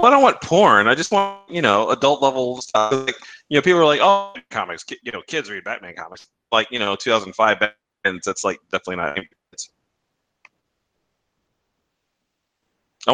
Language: English